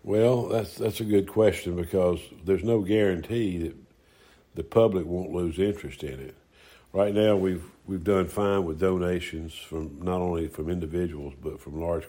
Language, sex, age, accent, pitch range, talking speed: English, male, 60-79, American, 80-95 Hz, 170 wpm